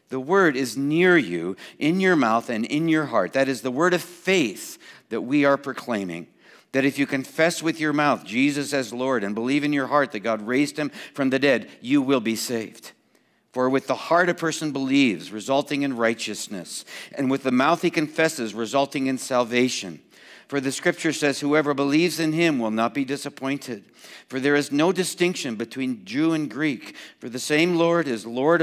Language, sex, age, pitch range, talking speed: English, male, 60-79, 120-160 Hz, 195 wpm